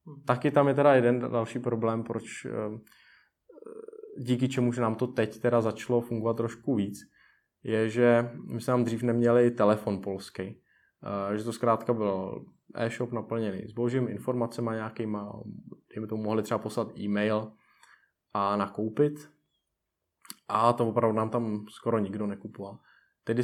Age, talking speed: 20-39, 145 wpm